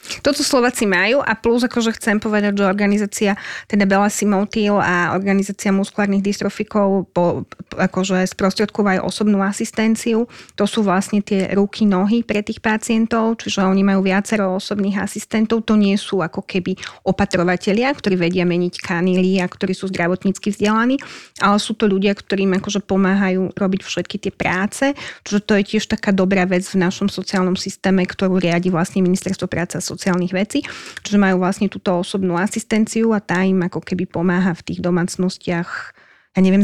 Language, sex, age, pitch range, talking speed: Slovak, female, 30-49, 185-215 Hz, 160 wpm